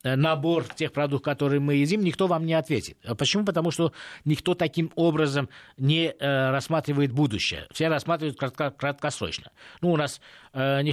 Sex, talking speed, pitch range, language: male, 145 wpm, 130-155 Hz, Russian